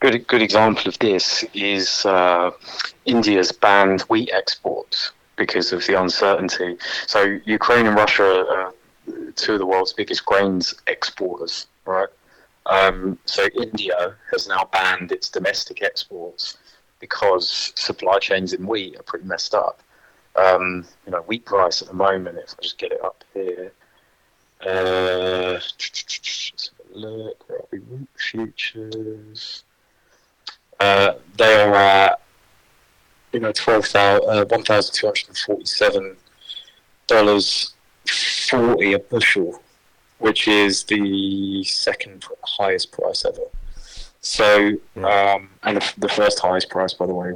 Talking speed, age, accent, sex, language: 115 wpm, 30-49, British, male, English